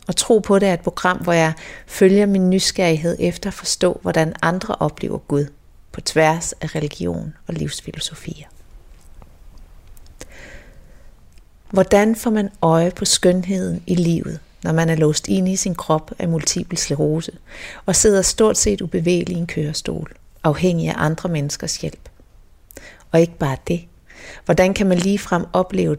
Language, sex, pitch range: Danish, female, 145-185 Hz